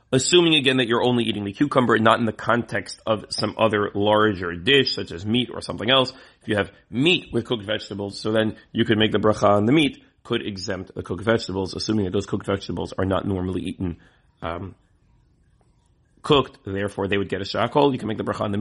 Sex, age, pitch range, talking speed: male, 30-49, 105-130 Hz, 225 wpm